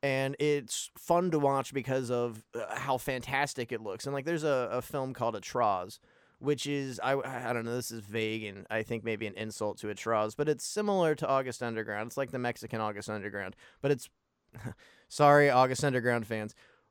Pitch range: 115-140 Hz